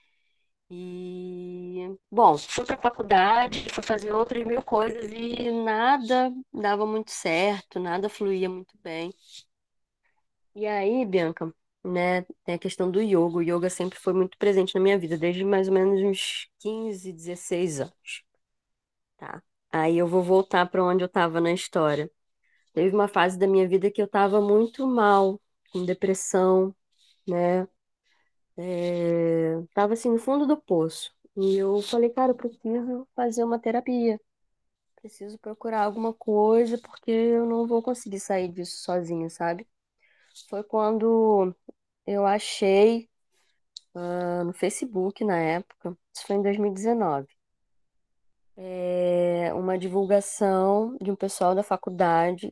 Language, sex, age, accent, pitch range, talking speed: Portuguese, female, 20-39, Brazilian, 180-220 Hz, 135 wpm